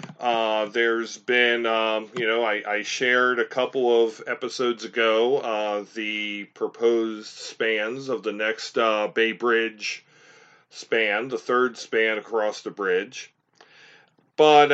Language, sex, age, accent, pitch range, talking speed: English, male, 40-59, American, 110-140 Hz, 130 wpm